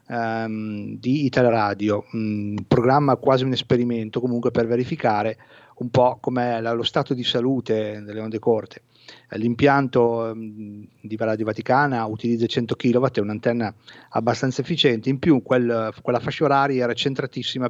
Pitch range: 115-135 Hz